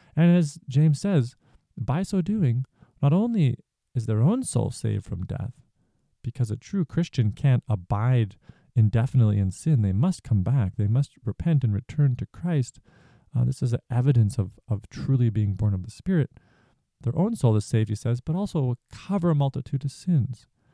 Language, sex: English, male